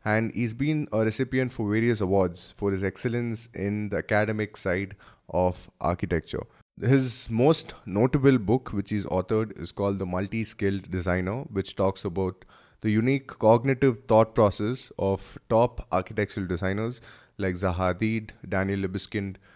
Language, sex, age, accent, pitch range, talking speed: English, male, 20-39, Indian, 95-120 Hz, 140 wpm